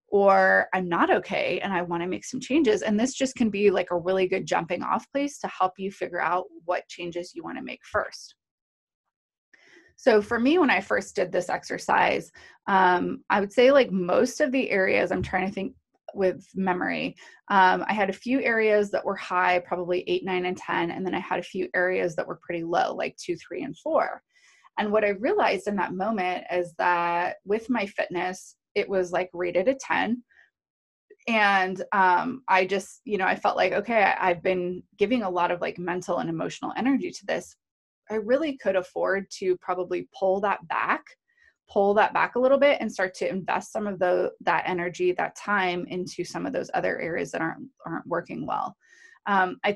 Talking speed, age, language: 200 wpm, 20-39, English